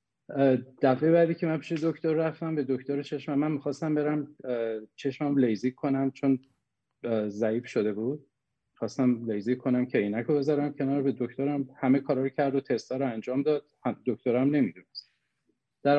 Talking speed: 150 wpm